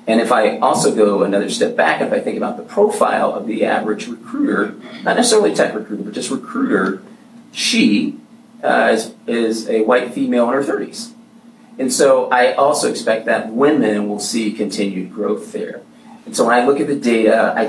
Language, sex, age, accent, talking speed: English, male, 30-49, American, 190 wpm